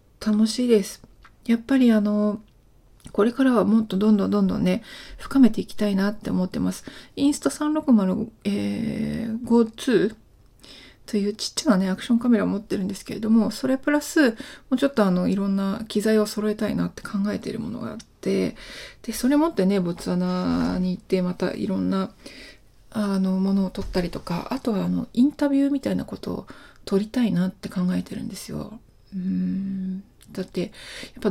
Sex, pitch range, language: female, 190-235 Hz, Japanese